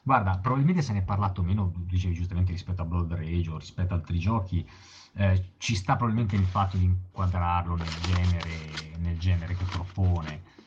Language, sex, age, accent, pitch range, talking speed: Italian, male, 30-49, native, 85-95 Hz, 180 wpm